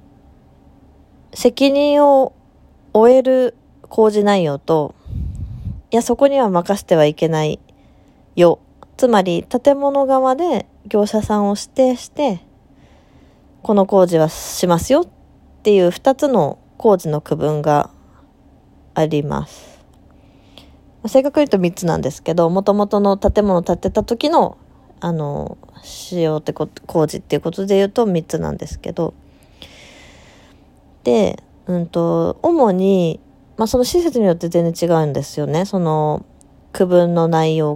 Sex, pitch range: female, 160-235 Hz